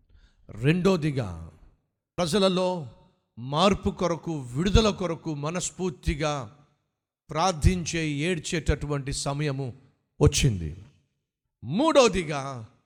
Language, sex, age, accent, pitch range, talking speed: Telugu, male, 50-69, native, 130-200 Hz, 55 wpm